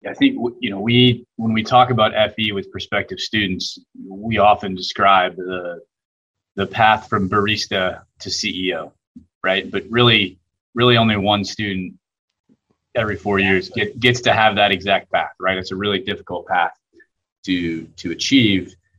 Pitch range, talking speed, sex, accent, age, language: 95-115 Hz, 155 wpm, male, American, 30-49, English